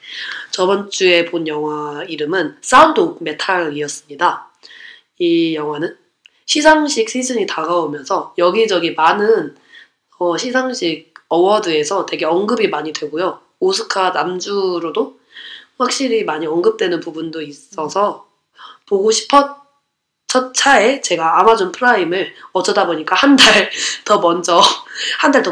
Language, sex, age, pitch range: Korean, female, 20-39, 155-230 Hz